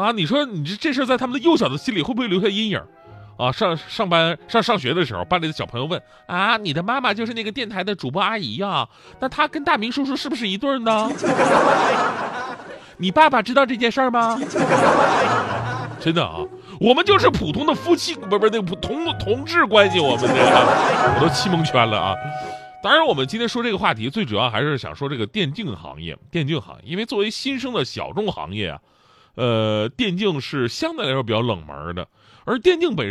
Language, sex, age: Chinese, male, 30-49